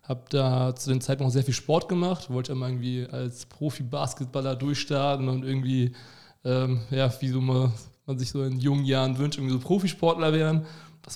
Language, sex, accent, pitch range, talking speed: German, male, German, 130-150 Hz, 185 wpm